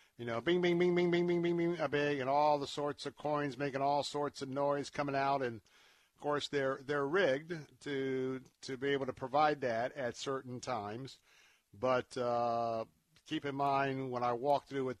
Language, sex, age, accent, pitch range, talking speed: English, male, 50-69, American, 120-140 Hz, 205 wpm